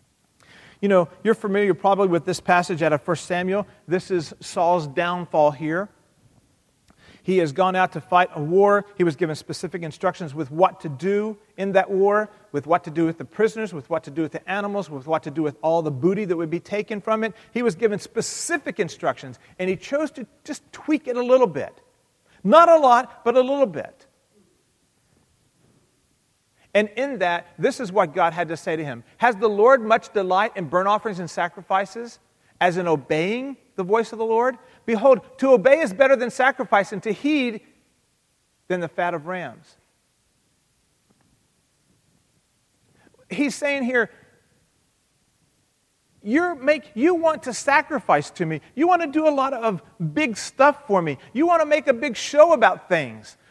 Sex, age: male, 40-59